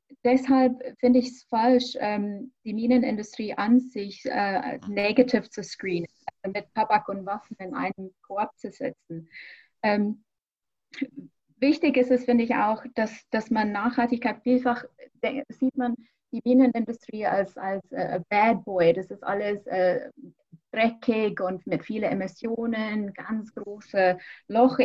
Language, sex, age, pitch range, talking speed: German, female, 20-39, 210-255 Hz, 130 wpm